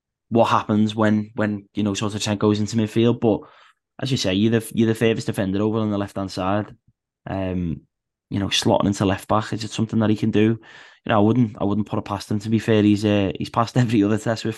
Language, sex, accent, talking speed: English, male, British, 260 wpm